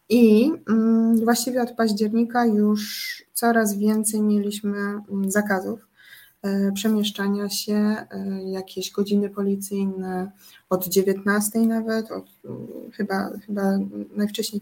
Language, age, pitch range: Polish, 20-39, 195-225 Hz